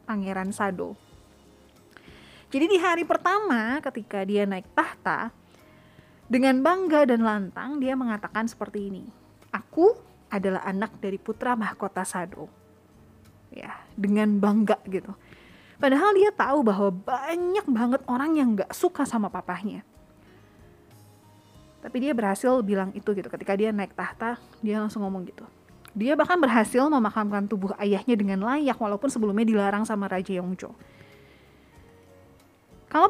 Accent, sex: native, female